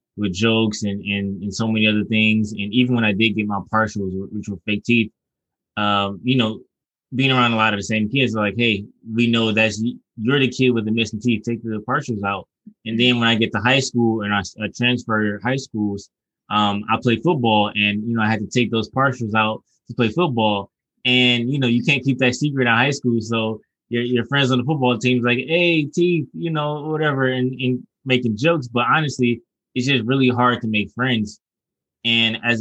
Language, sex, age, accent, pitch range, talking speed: English, male, 20-39, American, 110-125 Hz, 225 wpm